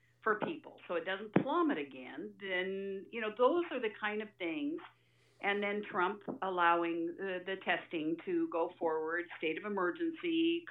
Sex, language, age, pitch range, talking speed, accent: female, English, 50-69, 165-230 Hz, 165 wpm, American